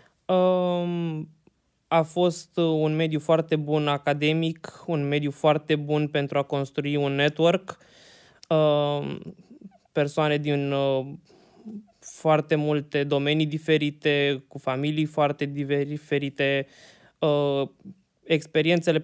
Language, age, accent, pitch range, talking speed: Romanian, 20-39, native, 140-160 Hz, 85 wpm